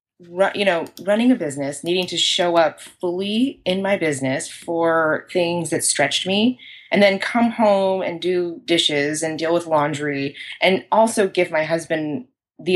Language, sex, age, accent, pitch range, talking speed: English, female, 20-39, American, 165-220 Hz, 165 wpm